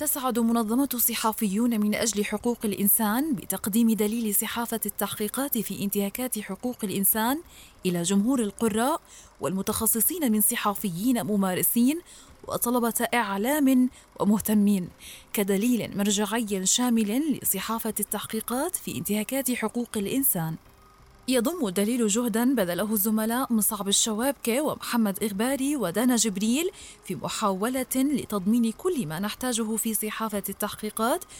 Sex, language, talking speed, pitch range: female, Arabic, 105 wpm, 200-240 Hz